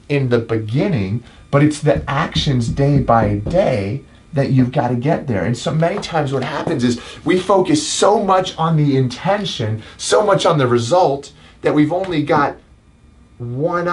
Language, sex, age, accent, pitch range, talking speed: English, male, 30-49, American, 125-170 Hz, 170 wpm